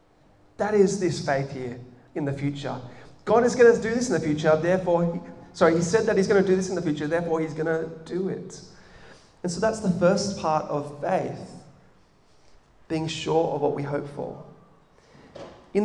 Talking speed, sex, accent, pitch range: 195 wpm, male, Australian, 150-195 Hz